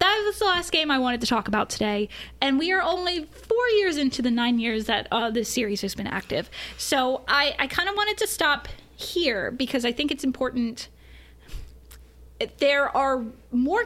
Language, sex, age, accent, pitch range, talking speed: English, female, 20-39, American, 230-290 Hz, 190 wpm